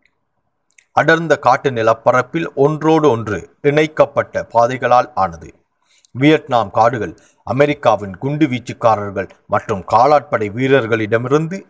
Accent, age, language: native, 50-69, Tamil